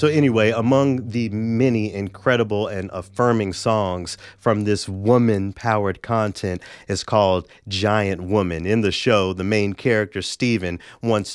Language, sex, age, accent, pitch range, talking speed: English, male, 30-49, American, 100-130 Hz, 130 wpm